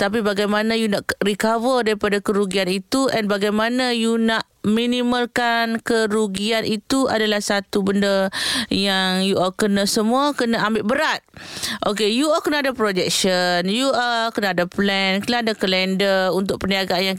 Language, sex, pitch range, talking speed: Malay, female, 205-255 Hz, 150 wpm